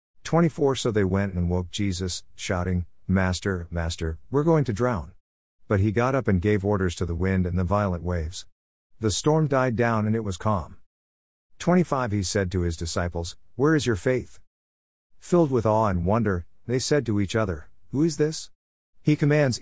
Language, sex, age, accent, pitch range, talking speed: English, male, 50-69, American, 90-120 Hz, 185 wpm